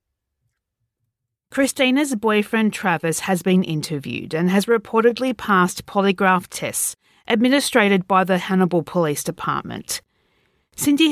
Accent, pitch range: Australian, 175-235 Hz